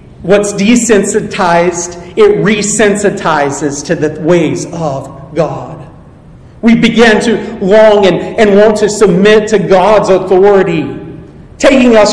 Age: 40-59